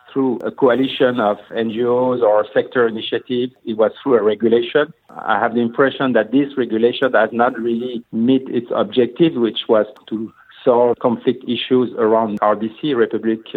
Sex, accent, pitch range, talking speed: male, French, 110-125 Hz, 155 wpm